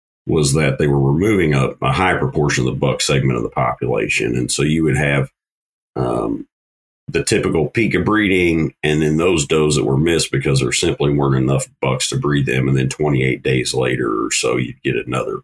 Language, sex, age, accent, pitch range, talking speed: English, male, 40-59, American, 65-85 Hz, 205 wpm